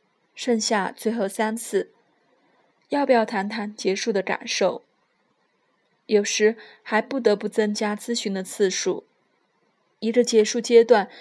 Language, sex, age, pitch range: Chinese, female, 20-39, 205-245 Hz